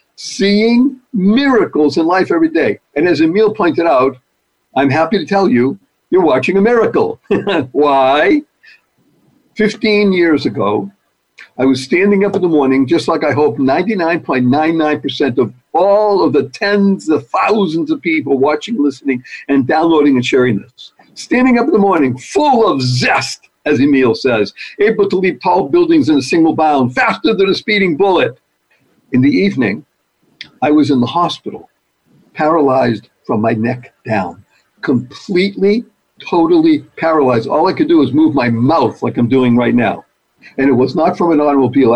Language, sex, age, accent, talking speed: English, male, 60-79, American, 160 wpm